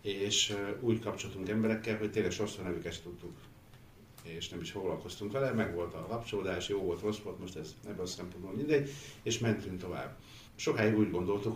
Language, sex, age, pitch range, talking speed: Hungarian, male, 60-79, 95-115 Hz, 170 wpm